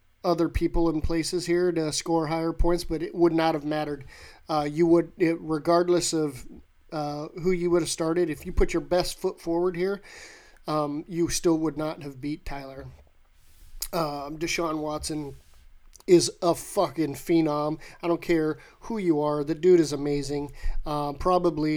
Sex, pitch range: male, 145-170 Hz